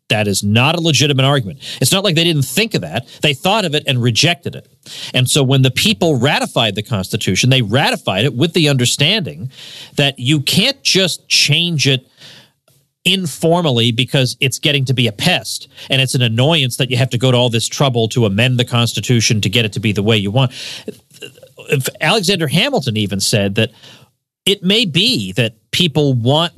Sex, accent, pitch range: male, American, 125-165 Hz